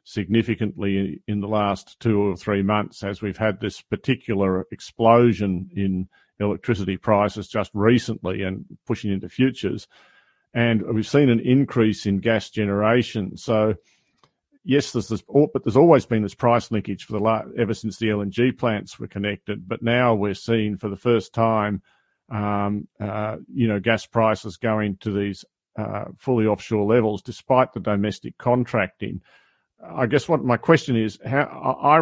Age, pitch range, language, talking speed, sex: 50-69, 105-120 Hz, English, 160 wpm, male